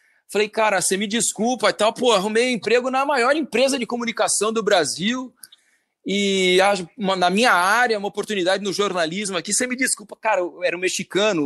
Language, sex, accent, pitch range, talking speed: Portuguese, male, Brazilian, 180-235 Hz, 185 wpm